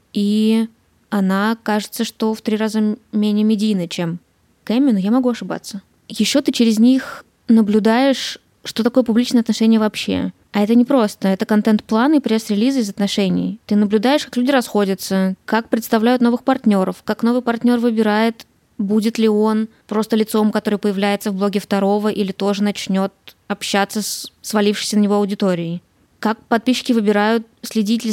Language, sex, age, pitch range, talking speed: Russian, female, 20-39, 205-230 Hz, 150 wpm